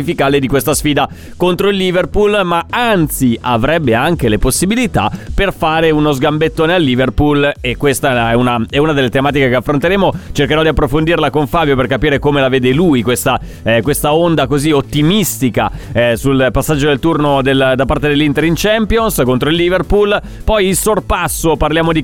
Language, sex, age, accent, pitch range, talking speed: Italian, male, 30-49, native, 140-175 Hz, 170 wpm